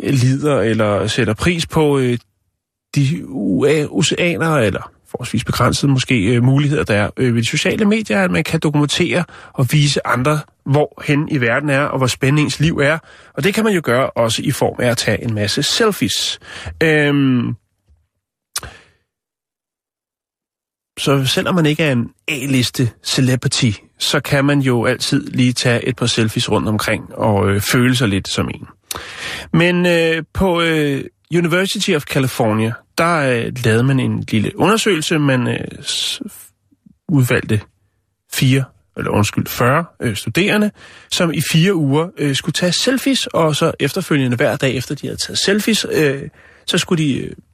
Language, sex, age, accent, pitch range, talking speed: Danish, male, 30-49, native, 120-160 Hz, 160 wpm